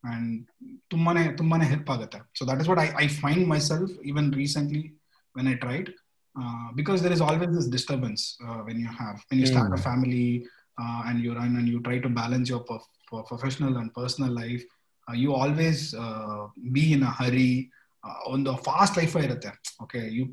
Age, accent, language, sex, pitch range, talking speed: 20-39, native, Kannada, male, 125-165 Hz, 185 wpm